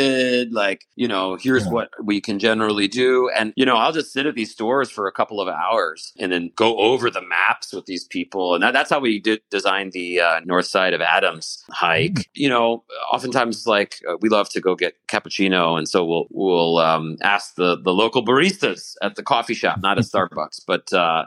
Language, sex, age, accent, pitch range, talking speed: English, male, 40-59, American, 100-130 Hz, 215 wpm